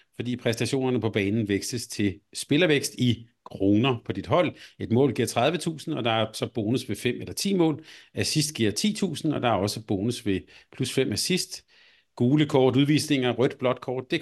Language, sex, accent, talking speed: Danish, male, native, 185 wpm